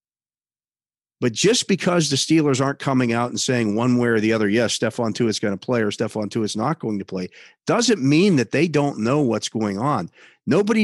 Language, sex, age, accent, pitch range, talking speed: English, male, 50-69, American, 120-180 Hz, 215 wpm